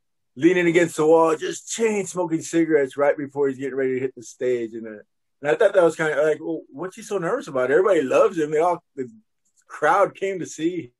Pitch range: 125-155 Hz